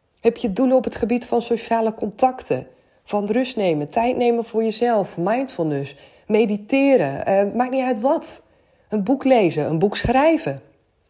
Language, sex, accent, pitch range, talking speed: Dutch, female, Dutch, 195-255 Hz, 155 wpm